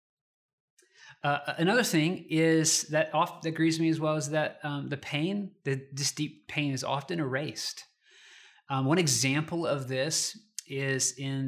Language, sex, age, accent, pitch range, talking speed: English, male, 30-49, American, 125-160 Hz, 155 wpm